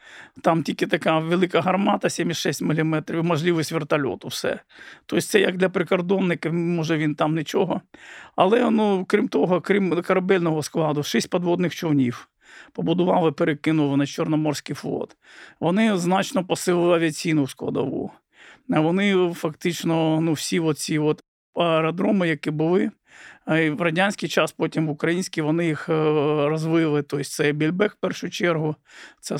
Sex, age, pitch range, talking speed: male, 50-69, 155-180 Hz, 135 wpm